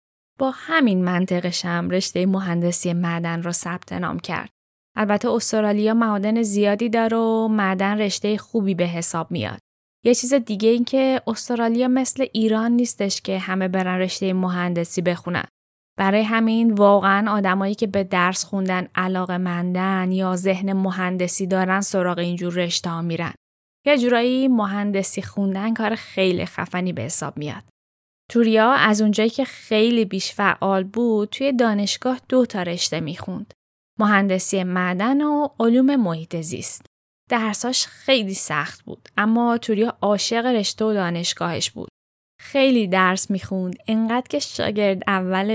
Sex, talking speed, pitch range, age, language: female, 135 wpm, 185-230 Hz, 10-29, Persian